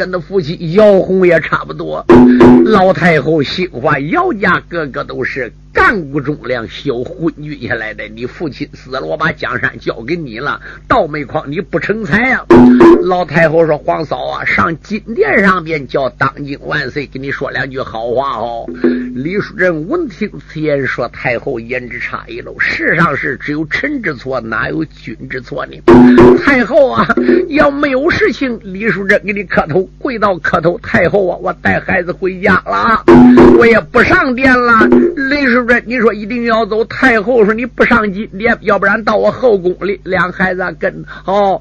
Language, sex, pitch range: Chinese, male, 165-225 Hz